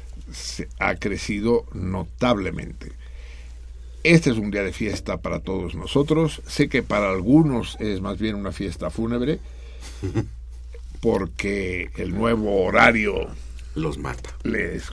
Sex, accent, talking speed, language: male, Mexican, 115 wpm, Spanish